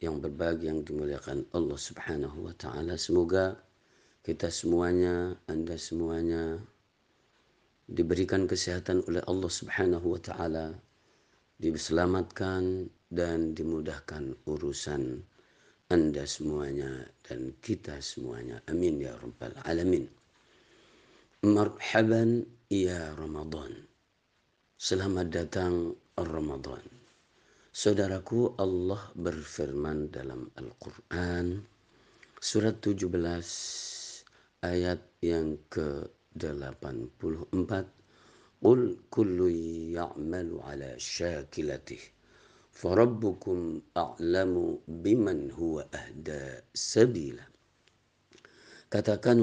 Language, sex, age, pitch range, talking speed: Indonesian, male, 50-69, 80-95 Hz, 70 wpm